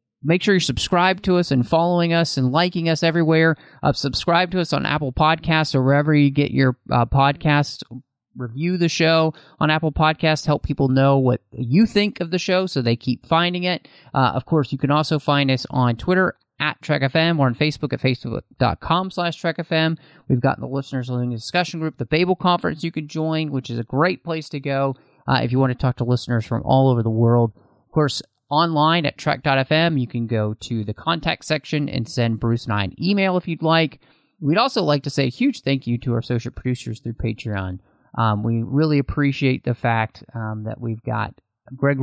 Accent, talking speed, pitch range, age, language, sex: American, 215 wpm, 120-160 Hz, 30-49, English, male